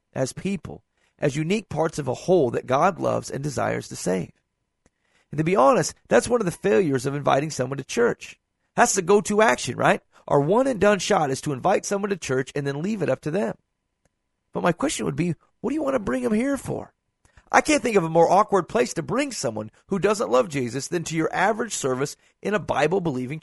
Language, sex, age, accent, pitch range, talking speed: English, male, 40-59, American, 145-220 Hz, 230 wpm